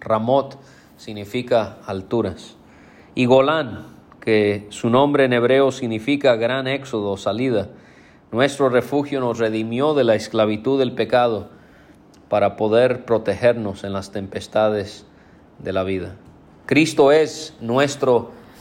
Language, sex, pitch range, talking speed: English, male, 110-135 Hz, 115 wpm